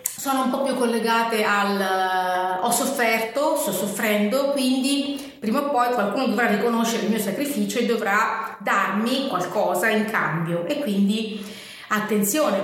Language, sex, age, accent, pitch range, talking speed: Italian, female, 30-49, native, 195-230 Hz, 140 wpm